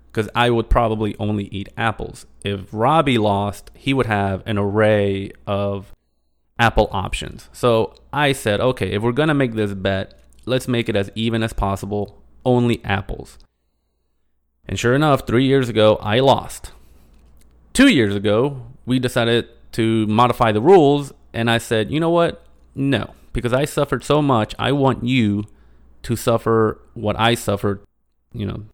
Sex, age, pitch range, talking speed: male, 30-49, 95-125 Hz, 160 wpm